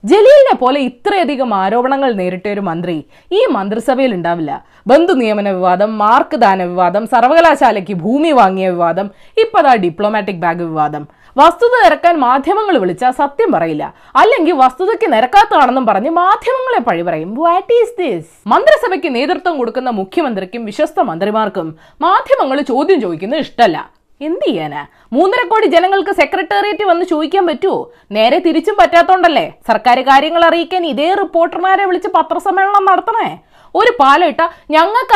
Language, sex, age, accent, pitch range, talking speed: Malayalam, female, 20-39, native, 220-355 Hz, 125 wpm